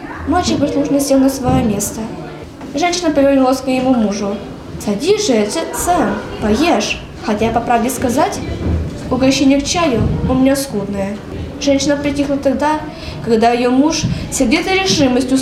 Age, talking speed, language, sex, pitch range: 10-29, 130 wpm, Russian, female, 250-310 Hz